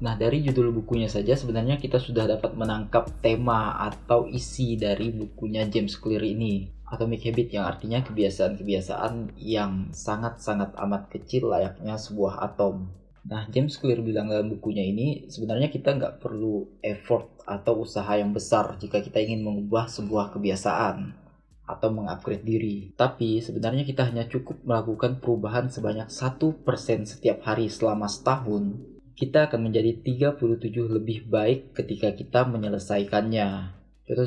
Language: Indonesian